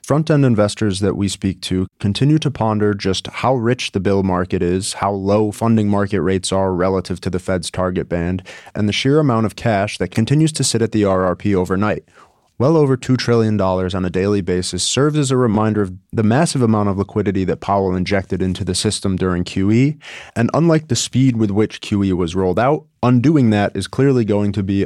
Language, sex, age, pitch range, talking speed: English, male, 30-49, 95-120 Hz, 205 wpm